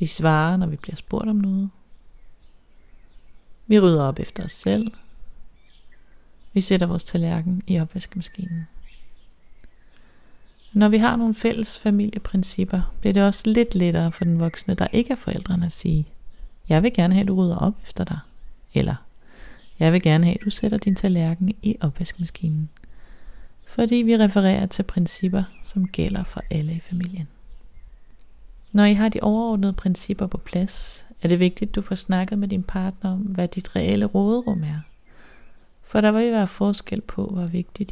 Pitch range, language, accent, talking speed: 170-205 Hz, Danish, native, 170 wpm